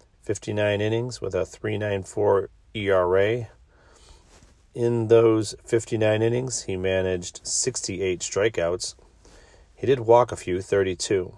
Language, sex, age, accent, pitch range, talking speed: English, male, 40-59, American, 85-105 Hz, 105 wpm